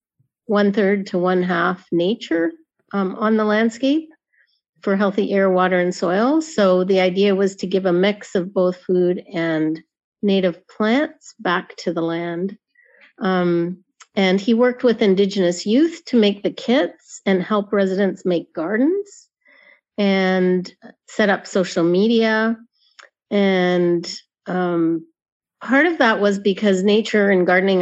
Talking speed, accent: 140 wpm, American